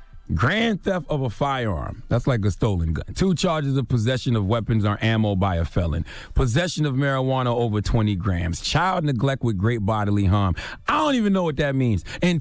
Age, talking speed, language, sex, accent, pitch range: 30-49, 200 wpm, English, male, American, 110-160 Hz